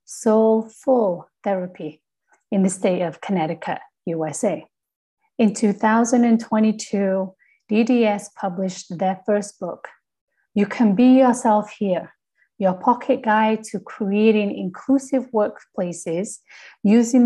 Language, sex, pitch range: English, female, 190-235 Hz